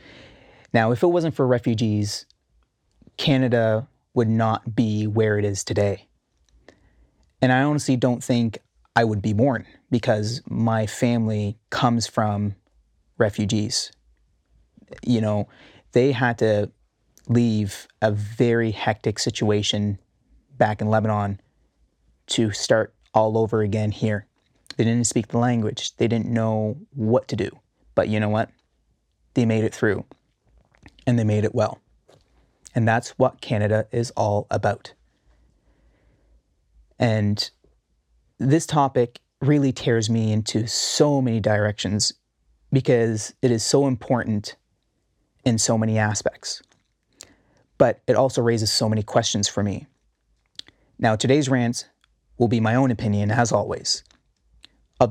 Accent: American